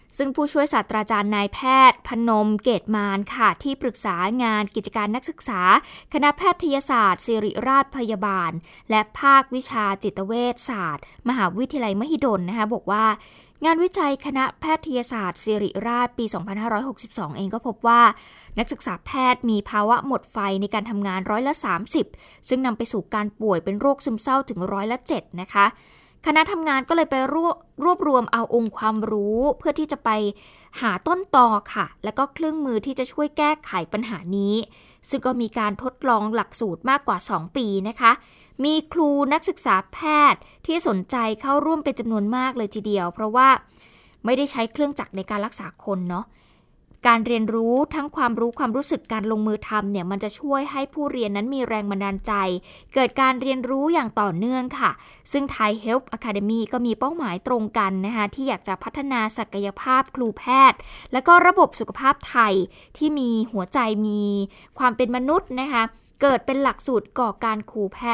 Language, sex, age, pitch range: Thai, female, 20-39, 215-275 Hz